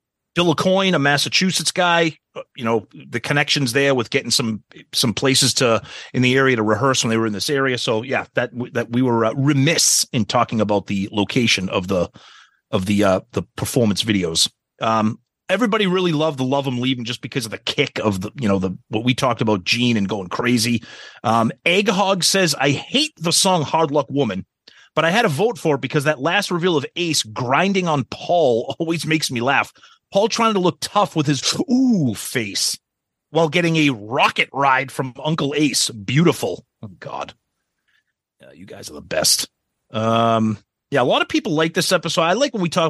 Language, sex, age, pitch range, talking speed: English, male, 30-49, 115-165 Hz, 205 wpm